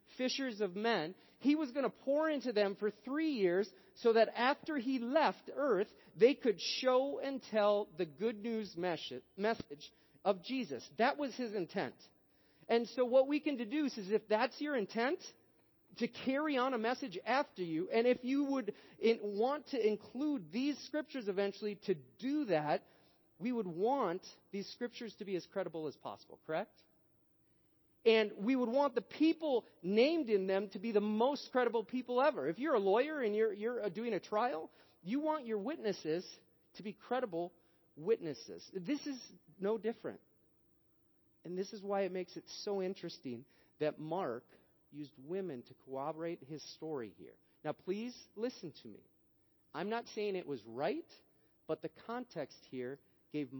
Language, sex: English, male